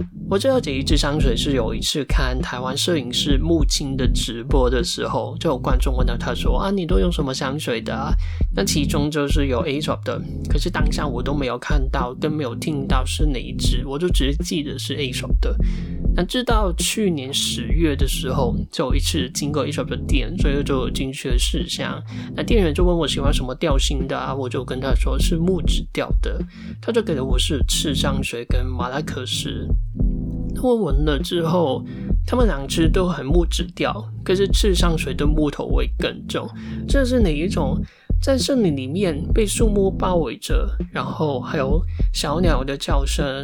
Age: 20-39